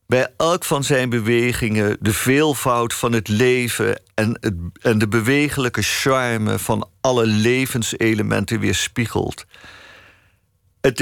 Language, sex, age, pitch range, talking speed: Dutch, male, 50-69, 100-130 Hz, 110 wpm